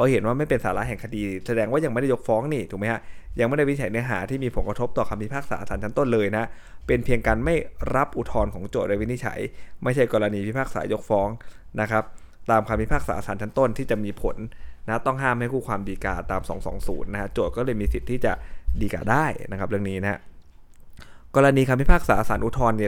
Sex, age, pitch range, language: male, 20-39, 100-120 Hz, Thai